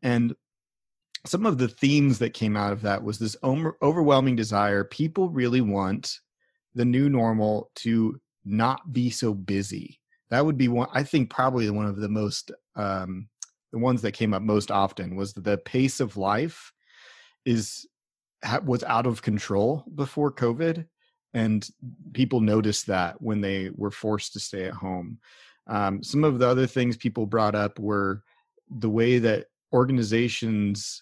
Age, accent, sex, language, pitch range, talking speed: 30-49, American, male, English, 105-125 Hz, 160 wpm